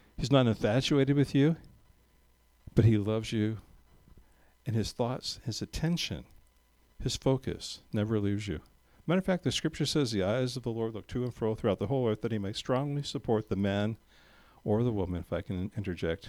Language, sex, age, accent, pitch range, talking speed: English, male, 50-69, American, 110-155 Hz, 190 wpm